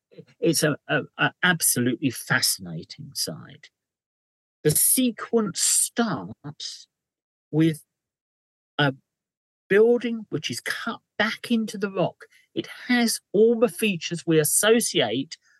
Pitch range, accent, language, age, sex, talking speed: 145-195 Hz, British, English, 50-69, male, 105 wpm